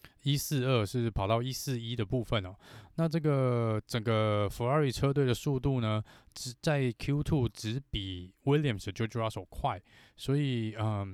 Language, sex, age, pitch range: Chinese, male, 20-39, 100-130 Hz